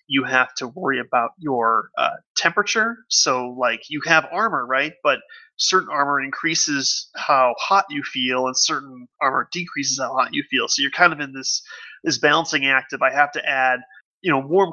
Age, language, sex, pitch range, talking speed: 30-49, English, male, 130-170 Hz, 190 wpm